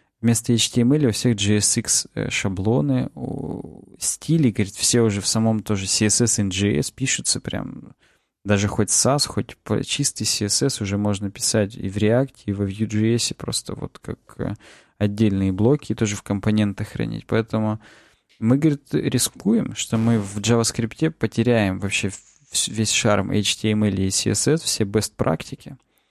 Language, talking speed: Russian, 140 wpm